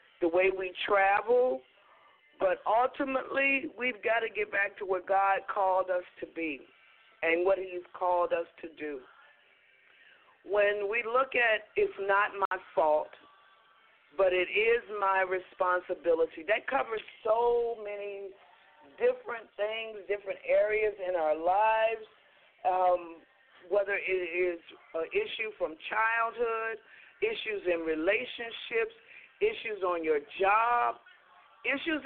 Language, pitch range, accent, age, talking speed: English, 195-295 Hz, American, 50-69, 120 wpm